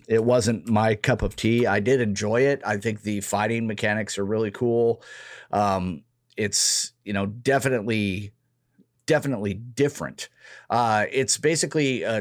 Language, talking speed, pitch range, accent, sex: English, 145 wpm, 105-125 Hz, American, male